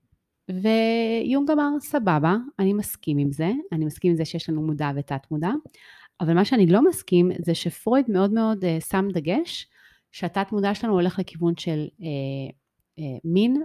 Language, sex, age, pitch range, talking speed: Hebrew, female, 30-49, 160-215 Hz, 165 wpm